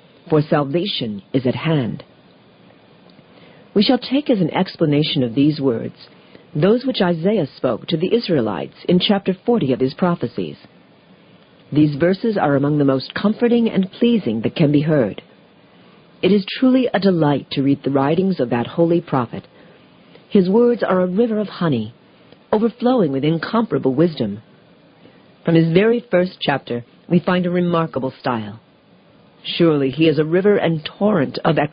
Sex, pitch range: female, 140-200 Hz